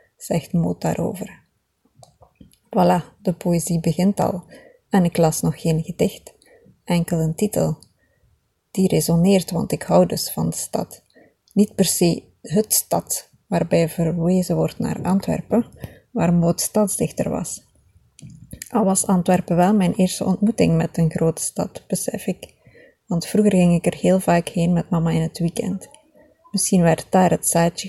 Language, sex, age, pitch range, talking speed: Dutch, female, 20-39, 165-195 Hz, 155 wpm